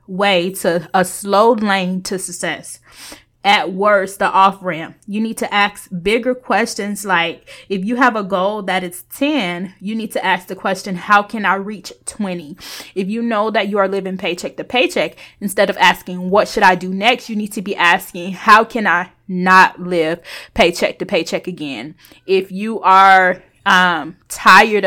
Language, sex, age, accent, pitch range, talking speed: English, female, 20-39, American, 180-205 Hz, 180 wpm